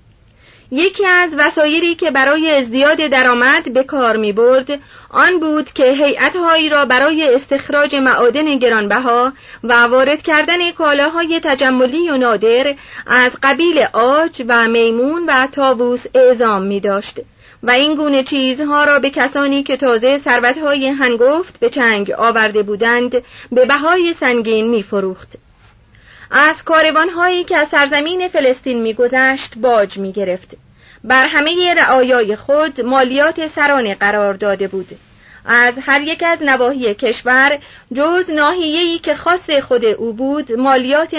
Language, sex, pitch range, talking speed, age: Persian, female, 240-300 Hz, 125 wpm, 30-49